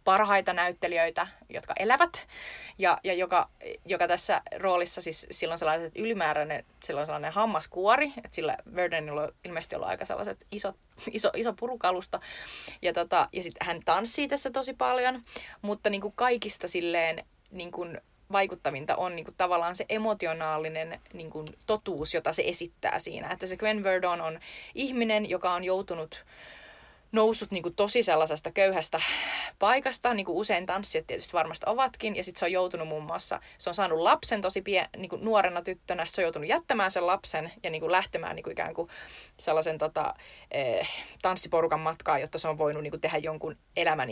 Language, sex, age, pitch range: Finnish, female, 20-39, 165-210 Hz